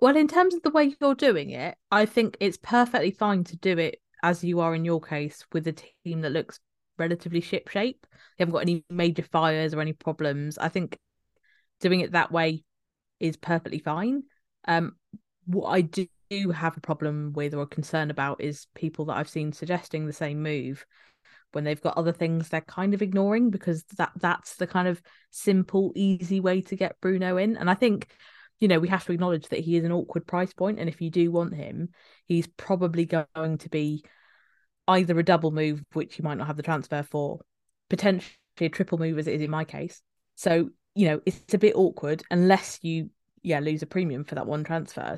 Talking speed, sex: 210 wpm, female